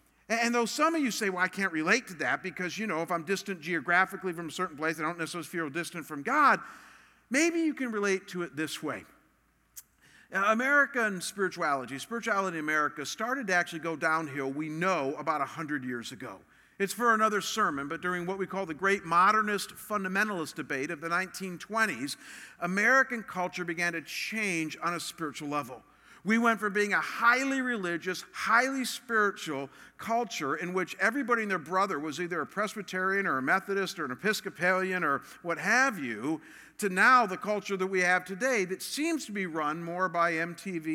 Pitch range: 160-215 Hz